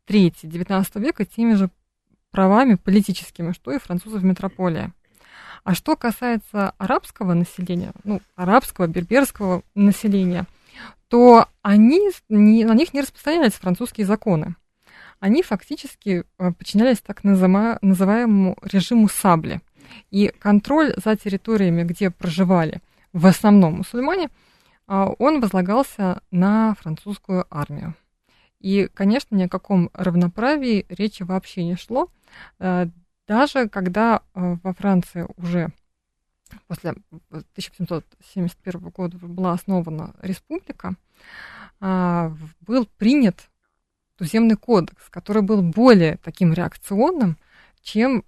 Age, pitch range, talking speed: 20-39, 180-220 Hz, 100 wpm